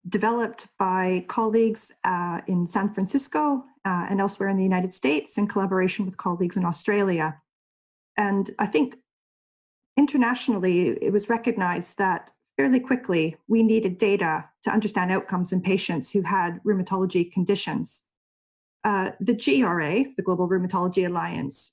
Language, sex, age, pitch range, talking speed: English, female, 30-49, 175-215 Hz, 135 wpm